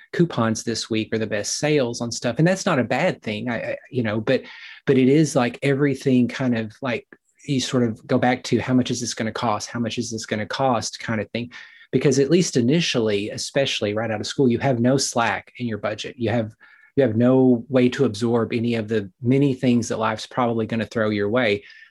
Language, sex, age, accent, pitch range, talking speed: English, male, 30-49, American, 115-130 Hz, 240 wpm